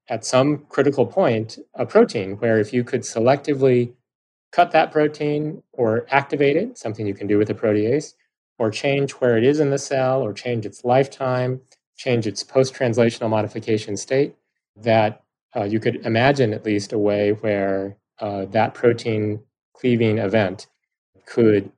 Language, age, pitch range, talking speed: English, 30-49, 105-125 Hz, 155 wpm